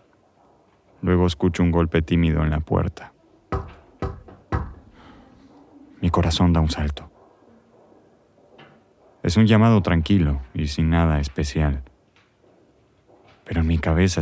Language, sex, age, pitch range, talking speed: Spanish, male, 30-49, 80-95 Hz, 105 wpm